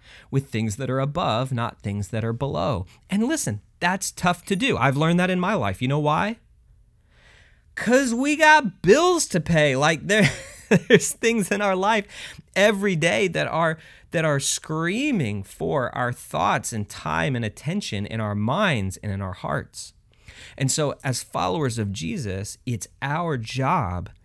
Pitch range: 100-150 Hz